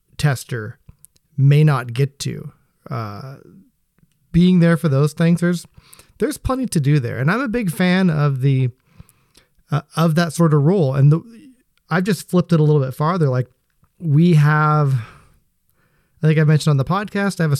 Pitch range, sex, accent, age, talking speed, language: 130-165 Hz, male, American, 30-49, 185 wpm, English